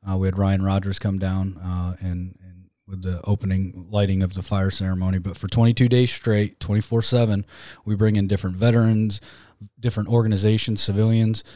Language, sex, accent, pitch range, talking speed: English, male, American, 95-105 Hz, 165 wpm